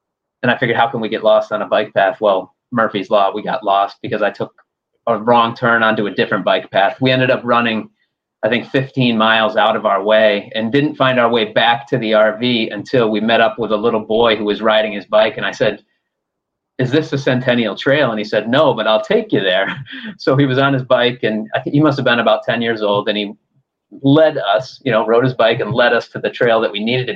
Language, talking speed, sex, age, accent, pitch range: English, 250 wpm, male, 30-49, American, 105-130 Hz